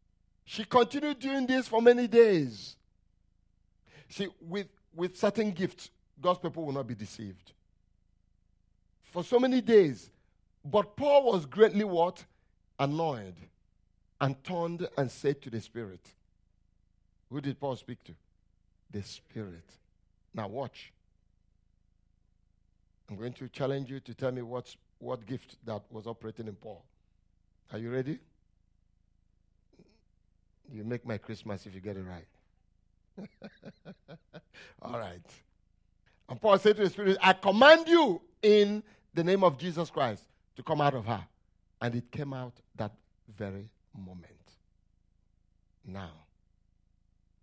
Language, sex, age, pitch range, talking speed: English, male, 50-69, 90-140 Hz, 130 wpm